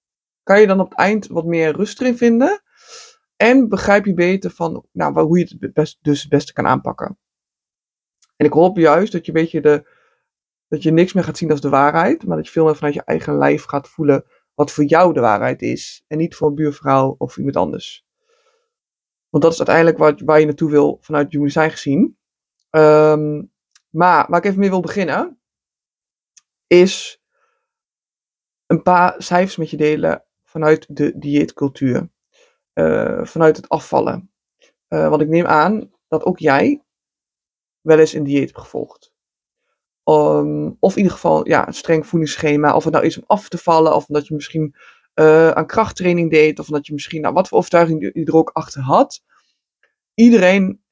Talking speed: 185 wpm